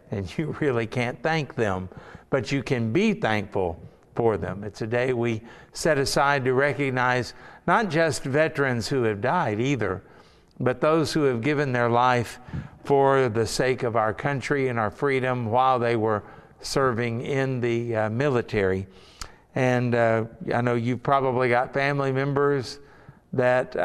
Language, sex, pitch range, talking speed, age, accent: English, male, 115-140 Hz, 155 wpm, 60-79, American